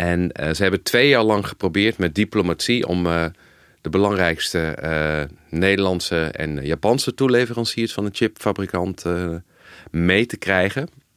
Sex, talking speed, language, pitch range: male, 140 wpm, Dutch, 90-110 Hz